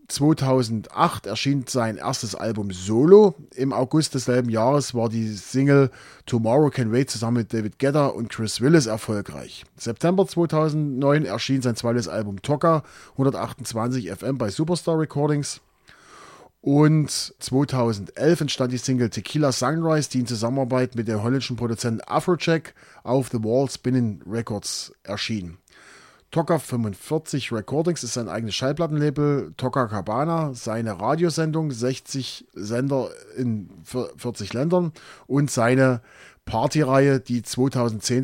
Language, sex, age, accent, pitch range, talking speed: German, male, 30-49, German, 115-145 Hz, 120 wpm